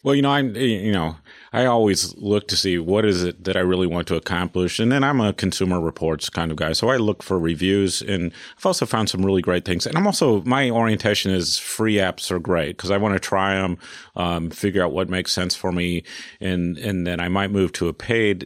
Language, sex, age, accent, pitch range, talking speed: English, male, 40-59, American, 90-110 Hz, 245 wpm